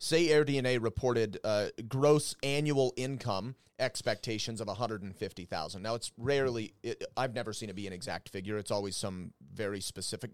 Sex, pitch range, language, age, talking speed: male, 105-130 Hz, English, 30-49, 180 wpm